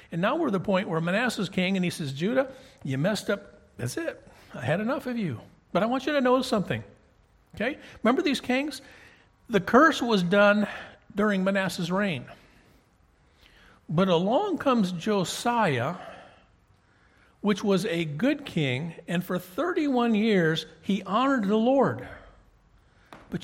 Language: English